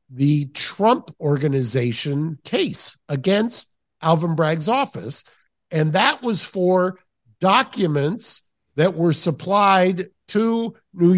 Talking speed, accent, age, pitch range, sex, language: 95 wpm, American, 50-69, 145-195 Hz, male, English